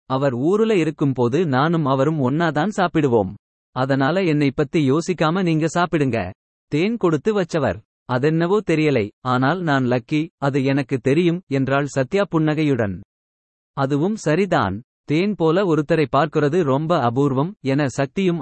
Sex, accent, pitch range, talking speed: male, native, 135-170 Hz, 120 wpm